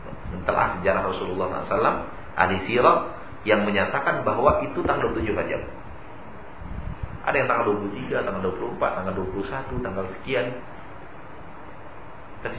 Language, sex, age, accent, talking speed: Indonesian, male, 50-69, native, 110 wpm